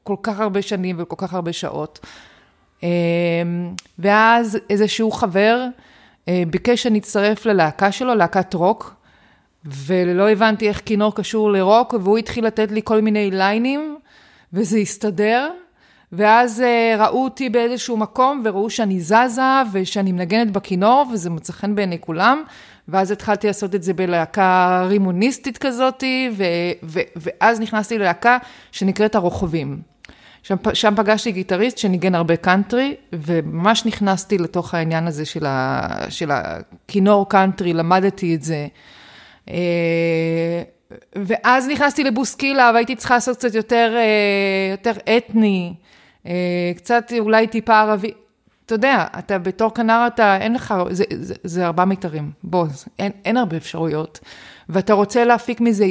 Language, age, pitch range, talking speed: Hebrew, 30-49, 180-230 Hz, 125 wpm